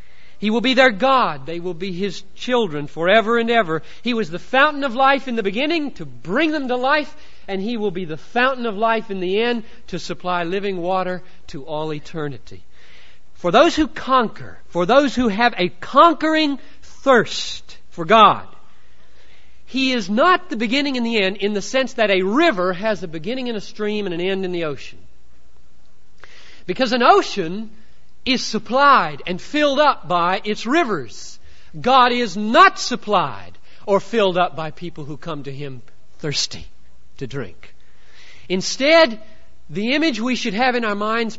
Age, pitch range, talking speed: 40-59, 160-240 Hz, 175 wpm